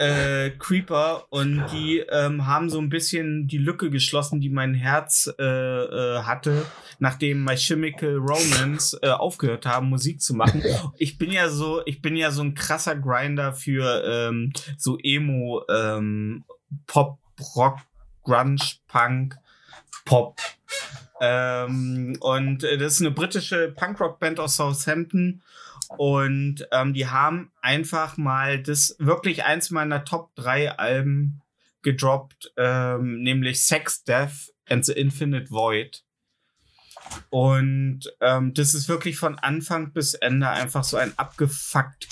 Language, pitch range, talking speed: German, 130-155 Hz, 130 wpm